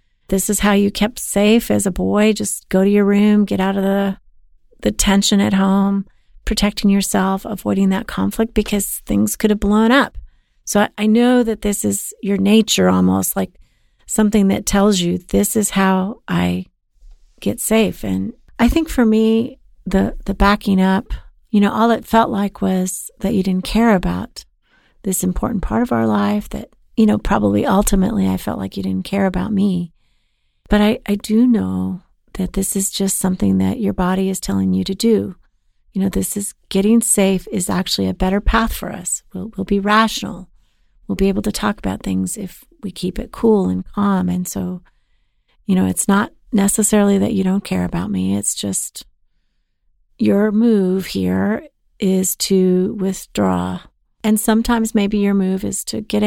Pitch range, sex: 185-210 Hz, female